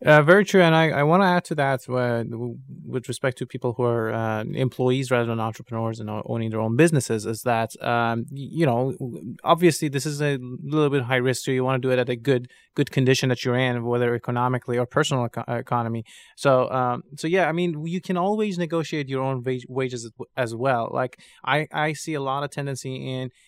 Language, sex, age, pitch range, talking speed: English, male, 20-39, 125-145 Hz, 220 wpm